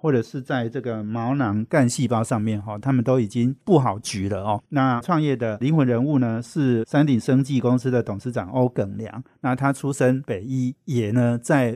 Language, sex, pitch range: Chinese, male, 115-140 Hz